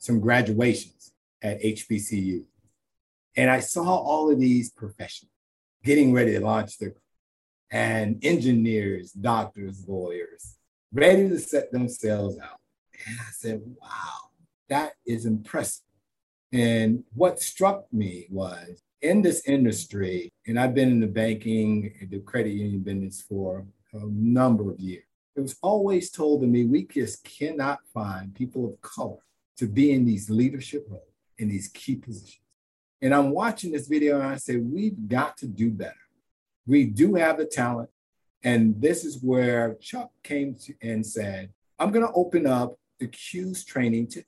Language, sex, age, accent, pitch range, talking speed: English, male, 50-69, American, 100-130 Hz, 155 wpm